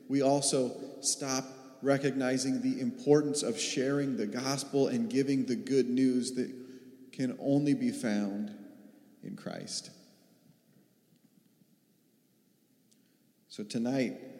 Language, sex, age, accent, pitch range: Japanese, male, 40-59, American, 125-145 Hz